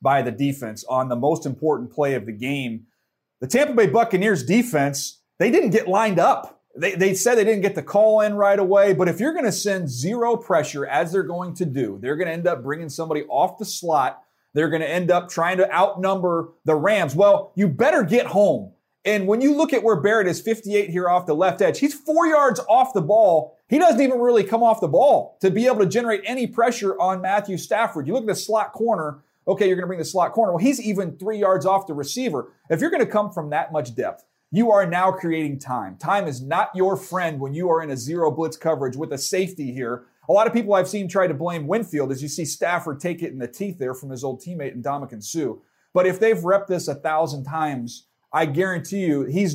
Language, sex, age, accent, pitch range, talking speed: English, male, 30-49, American, 150-200 Hz, 240 wpm